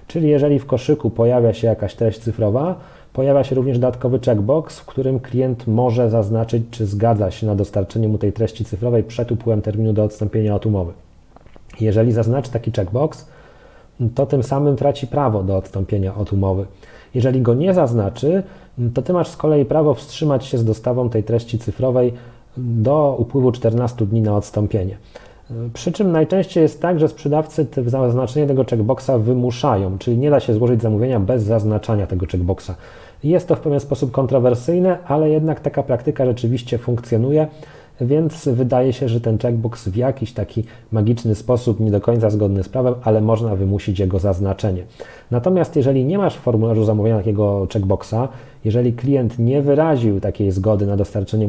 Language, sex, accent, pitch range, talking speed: Polish, male, native, 110-135 Hz, 165 wpm